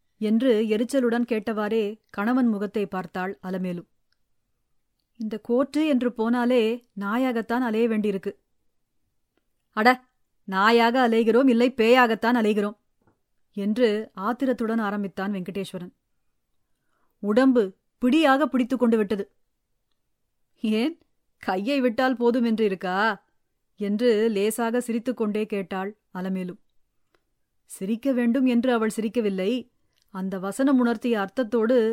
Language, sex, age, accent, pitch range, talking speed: English, female, 30-49, Indian, 210-250 Hz, 90 wpm